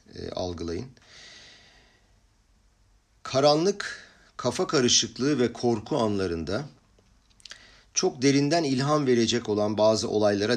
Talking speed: 80 wpm